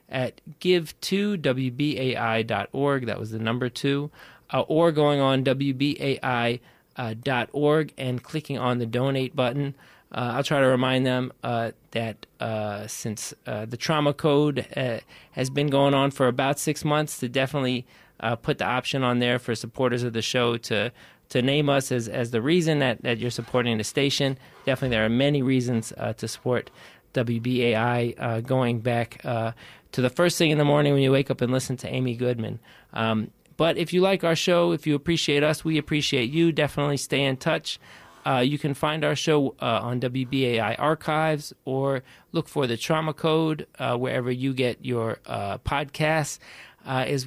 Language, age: English, 20-39